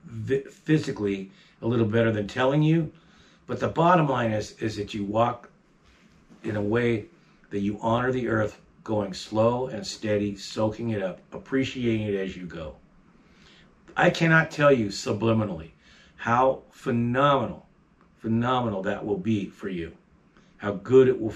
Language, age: English, 50-69